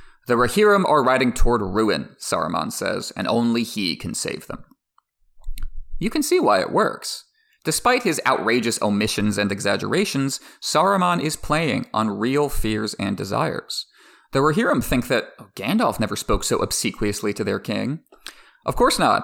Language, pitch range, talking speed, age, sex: English, 105-175 Hz, 155 wpm, 30-49, male